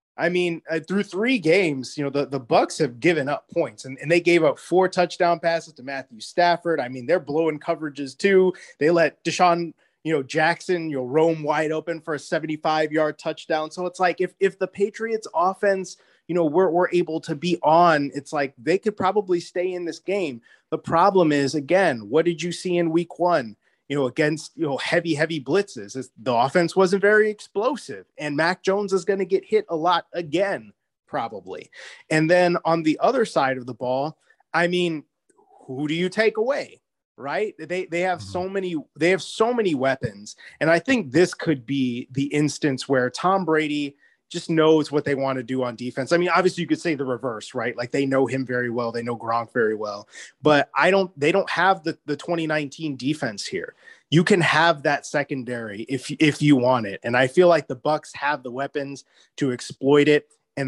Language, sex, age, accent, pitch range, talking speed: English, male, 20-39, American, 140-175 Hz, 210 wpm